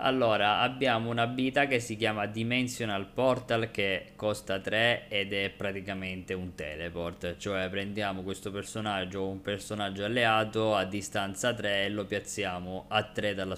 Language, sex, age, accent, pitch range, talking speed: Italian, male, 20-39, native, 95-110 Hz, 150 wpm